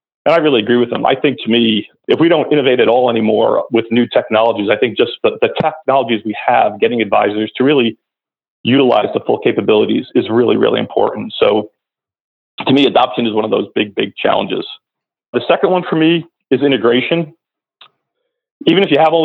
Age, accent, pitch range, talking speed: 40-59, American, 115-150 Hz, 195 wpm